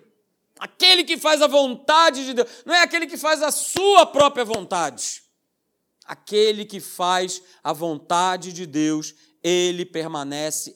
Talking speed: 140 wpm